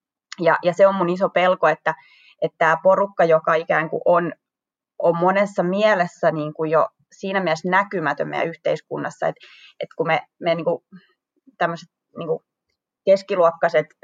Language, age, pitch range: Finnish, 20-39, 160-195 Hz